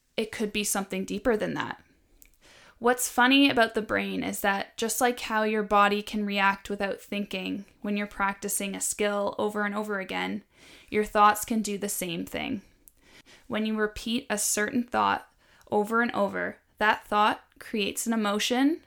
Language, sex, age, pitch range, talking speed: English, female, 10-29, 205-230 Hz, 170 wpm